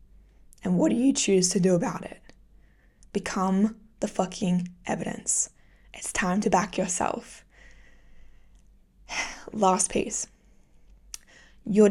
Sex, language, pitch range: female, English, 185-215 Hz